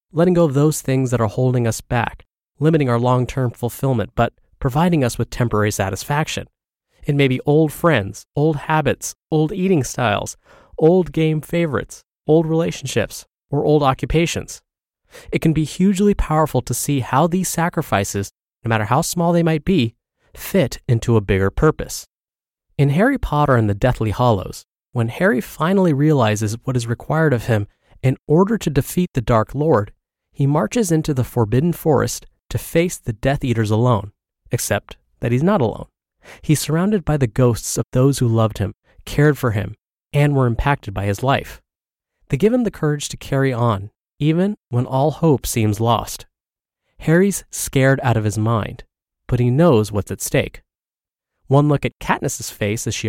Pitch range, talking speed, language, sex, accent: 110-155 Hz, 170 wpm, English, male, American